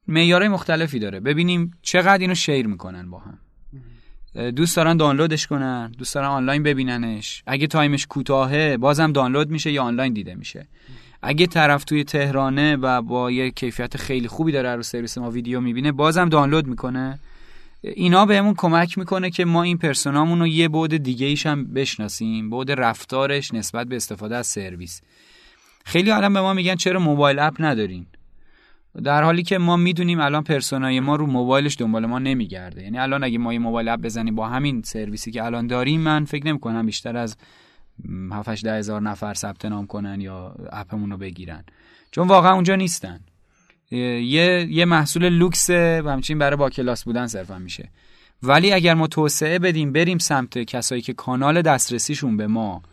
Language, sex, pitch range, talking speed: Persian, male, 115-160 Hz, 170 wpm